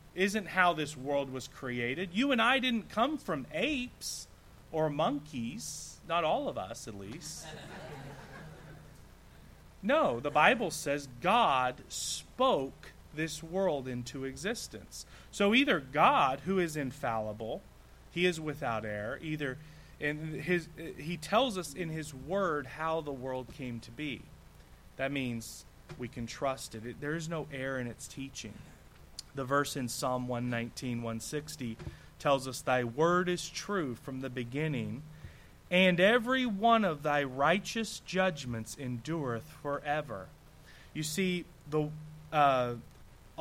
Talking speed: 140 wpm